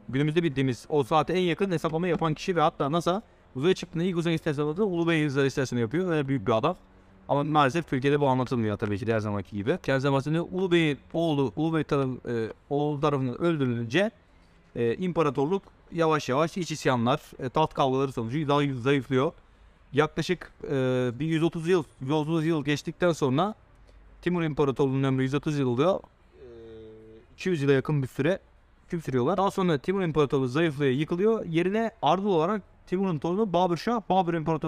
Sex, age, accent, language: male, 30-49, native, Turkish